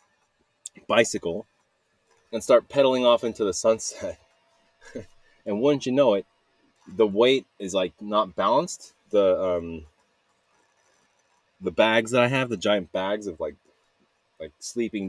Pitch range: 90-130 Hz